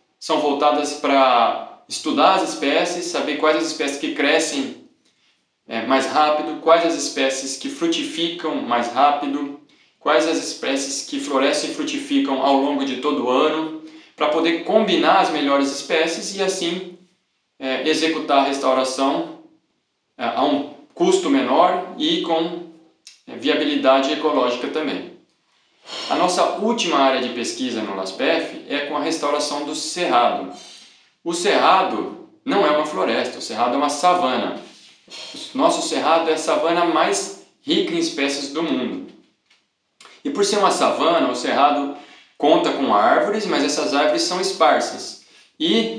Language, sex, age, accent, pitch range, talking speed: Portuguese, male, 20-39, Brazilian, 140-180 Hz, 135 wpm